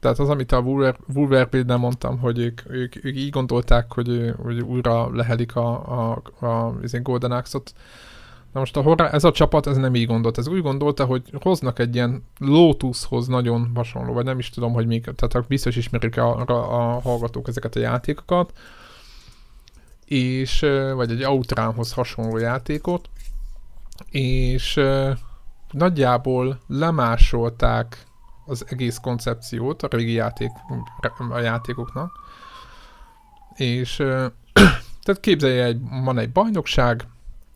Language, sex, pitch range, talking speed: Hungarian, male, 115-135 Hz, 130 wpm